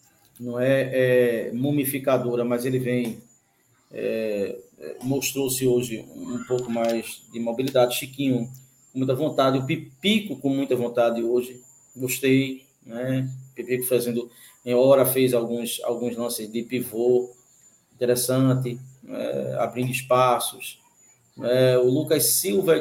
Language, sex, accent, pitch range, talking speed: Portuguese, male, Brazilian, 125-145 Hz, 120 wpm